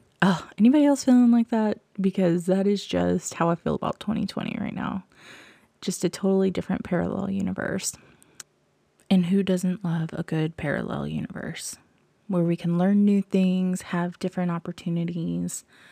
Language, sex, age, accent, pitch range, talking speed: English, female, 20-39, American, 170-195 Hz, 150 wpm